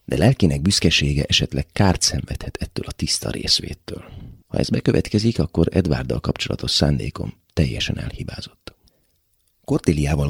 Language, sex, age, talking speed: Hungarian, male, 30-49, 115 wpm